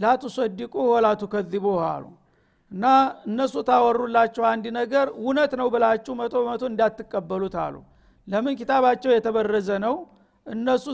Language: Amharic